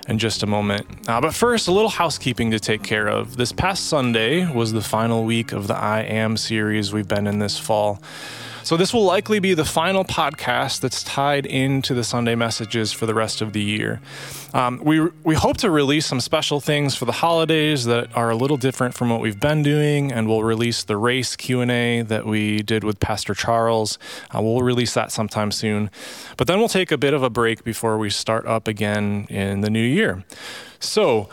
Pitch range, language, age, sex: 110-140 Hz, English, 20-39, male